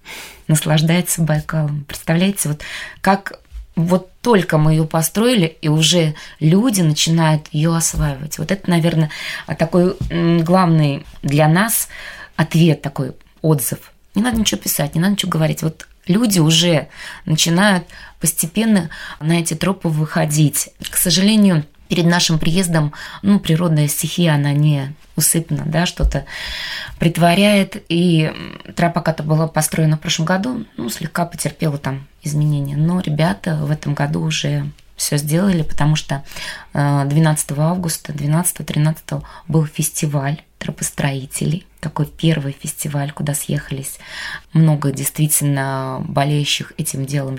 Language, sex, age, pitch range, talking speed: Russian, female, 20-39, 150-175 Hz, 120 wpm